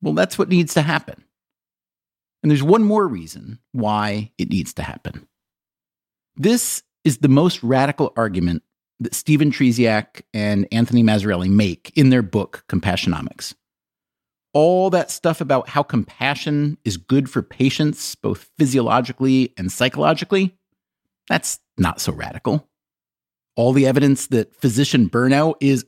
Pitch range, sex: 115-155 Hz, male